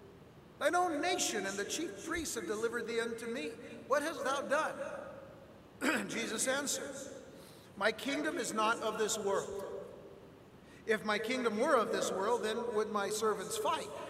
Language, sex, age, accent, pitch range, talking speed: English, male, 60-79, American, 195-245 Hz, 160 wpm